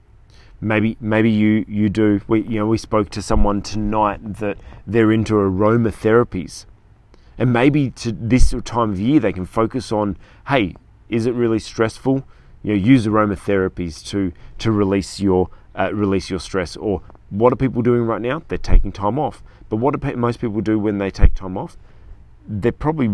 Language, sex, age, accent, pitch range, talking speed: English, male, 30-49, Australian, 95-115 Hz, 180 wpm